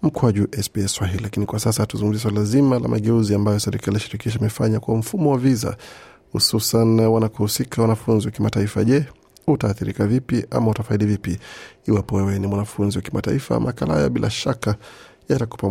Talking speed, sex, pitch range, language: 150 wpm, male, 105-120 Hz, Swahili